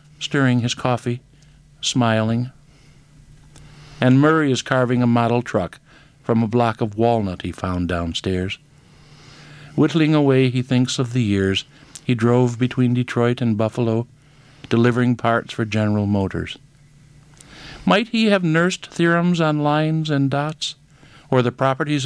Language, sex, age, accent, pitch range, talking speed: English, male, 60-79, American, 120-150 Hz, 135 wpm